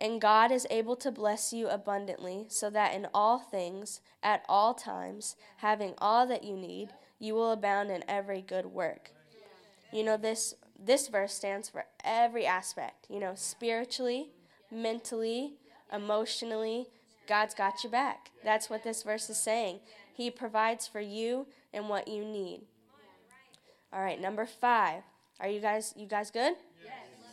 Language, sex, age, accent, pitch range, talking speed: English, female, 10-29, American, 200-235 Hz, 155 wpm